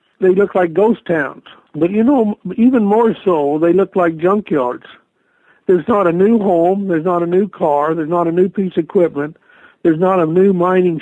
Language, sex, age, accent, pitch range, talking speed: English, male, 60-79, American, 170-205 Hz, 200 wpm